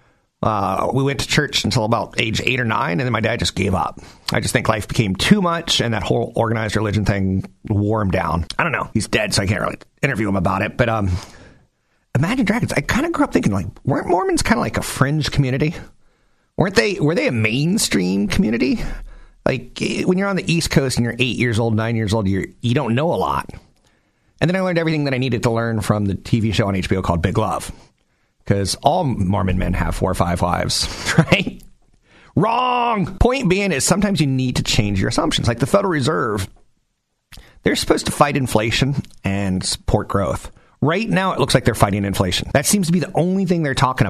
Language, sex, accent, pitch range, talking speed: English, male, American, 100-150 Hz, 220 wpm